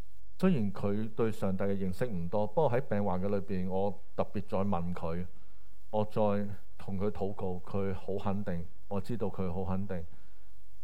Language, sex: Chinese, male